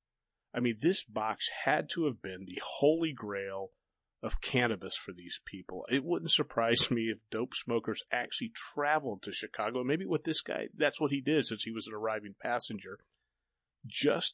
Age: 40-59